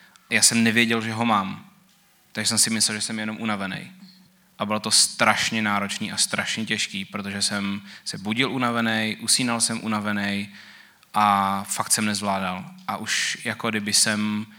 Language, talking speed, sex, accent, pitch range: Czech, 160 wpm, male, native, 110-125 Hz